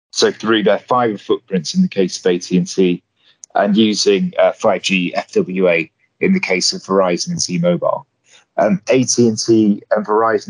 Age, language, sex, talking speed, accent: 30-49, English, male, 150 wpm, British